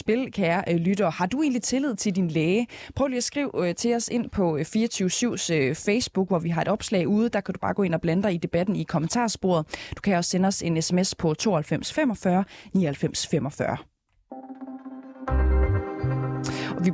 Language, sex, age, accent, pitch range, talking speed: Danish, female, 20-39, native, 160-215 Hz, 175 wpm